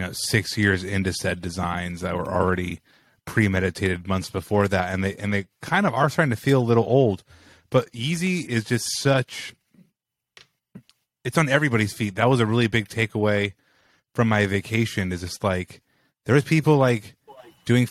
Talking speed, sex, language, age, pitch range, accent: 175 wpm, male, English, 30-49, 95-115 Hz, American